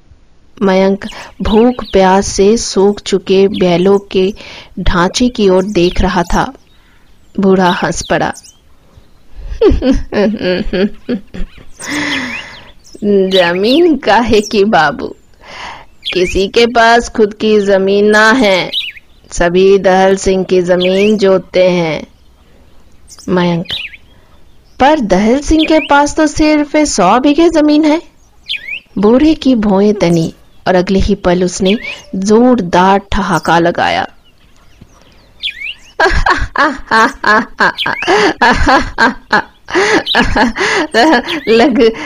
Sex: female